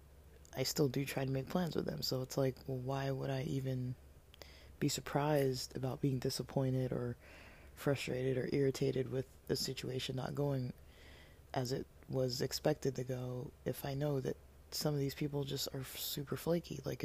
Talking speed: 175 wpm